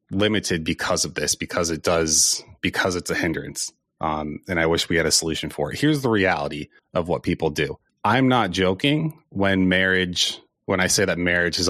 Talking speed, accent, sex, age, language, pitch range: 200 wpm, American, male, 30-49, English, 85-105 Hz